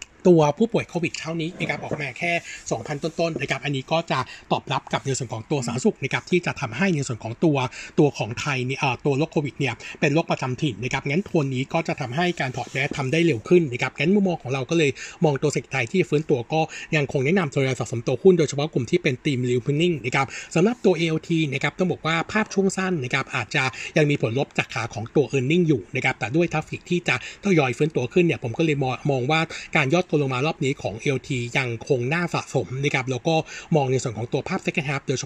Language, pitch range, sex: Thai, 130-165 Hz, male